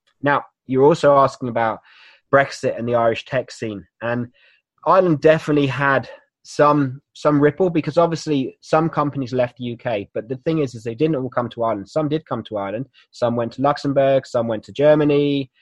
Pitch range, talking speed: 115-145 Hz, 190 wpm